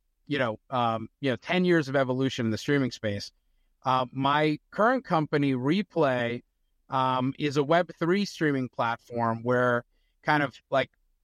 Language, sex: English, male